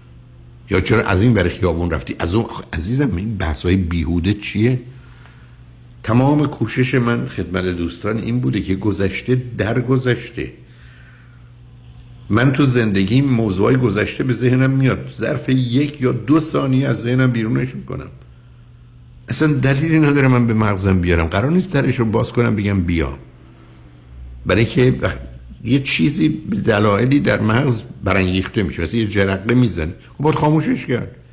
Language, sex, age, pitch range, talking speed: Persian, male, 60-79, 90-130 Hz, 145 wpm